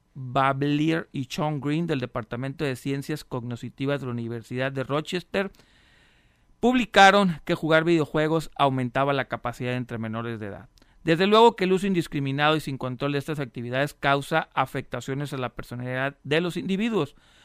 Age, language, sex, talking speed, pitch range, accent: 40-59, Spanish, male, 155 wpm, 125-160 Hz, Mexican